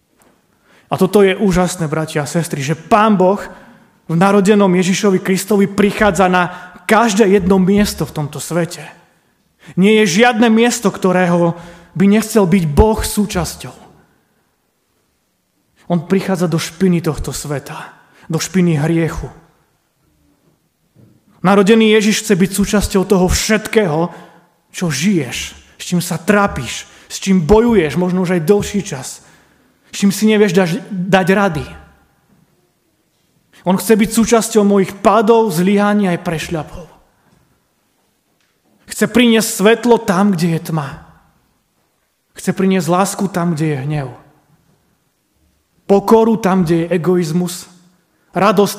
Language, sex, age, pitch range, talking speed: Slovak, male, 30-49, 165-205 Hz, 120 wpm